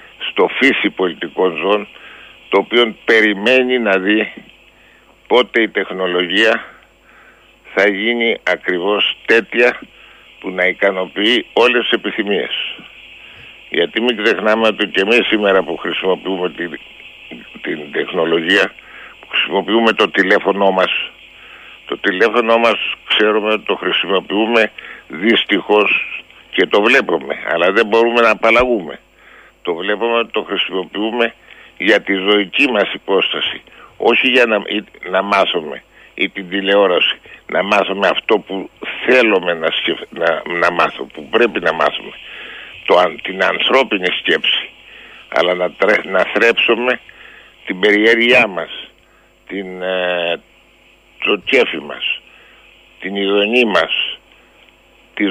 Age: 60-79